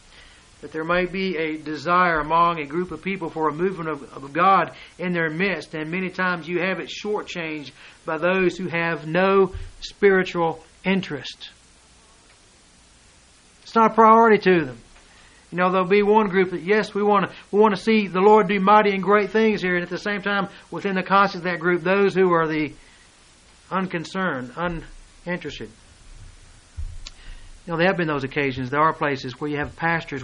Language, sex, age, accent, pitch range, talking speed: English, male, 60-79, American, 140-185 Hz, 185 wpm